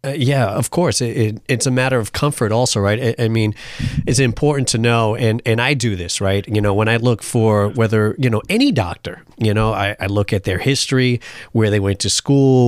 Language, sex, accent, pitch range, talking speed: English, male, American, 105-130 Hz, 235 wpm